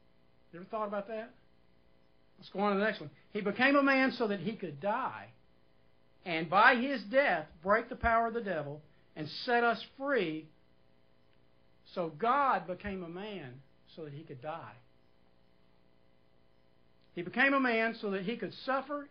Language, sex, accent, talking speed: English, male, American, 170 wpm